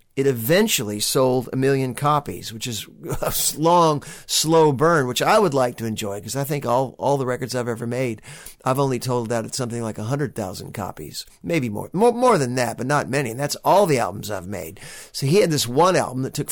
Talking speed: 225 wpm